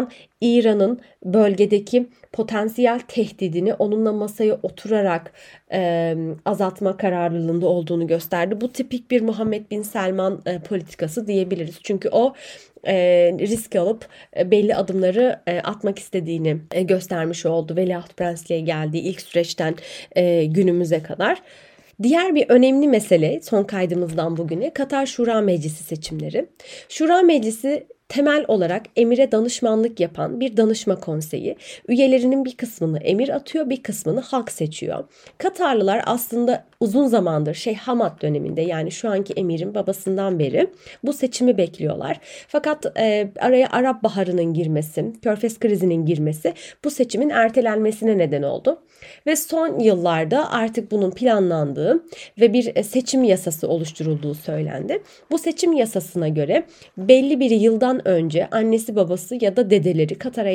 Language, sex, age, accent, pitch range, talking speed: Turkish, female, 30-49, native, 175-245 Hz, 130 wpm